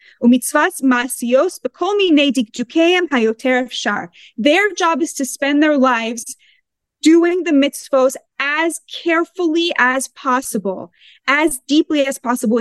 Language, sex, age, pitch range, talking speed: English, female, 20-39, 245-320 Hz, 85 wpm